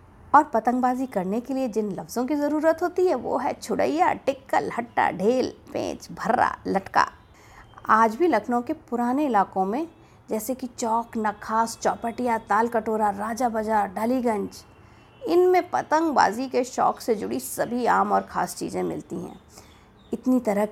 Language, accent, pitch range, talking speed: Hindi, native, 210-275 Hz, 150 wpm